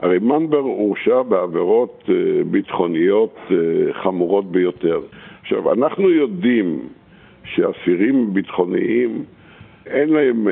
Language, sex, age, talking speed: Hebrew, male, 60-79, 80 wpm